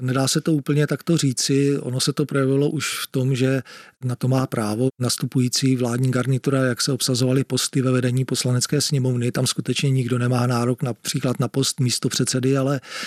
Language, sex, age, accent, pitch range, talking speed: Czech, male, 40-59, native, 125-135 Hz, 185 wpm